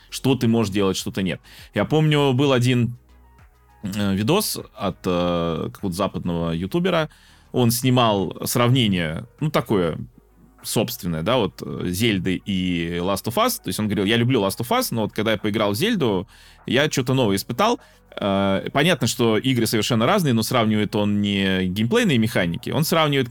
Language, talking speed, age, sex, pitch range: Russian, 160 wpm, 20-39, male, 100-145 Hz